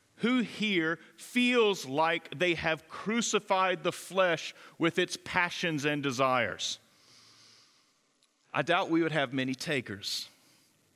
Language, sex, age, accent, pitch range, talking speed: English, male, 40-59, American, 175-220 Hz, 115 wpm